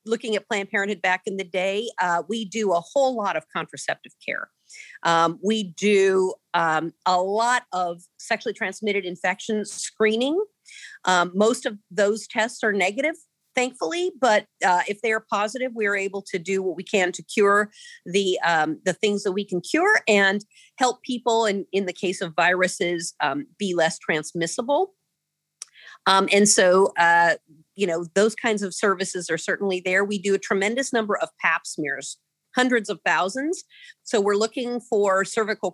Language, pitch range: English, 180-220 Hz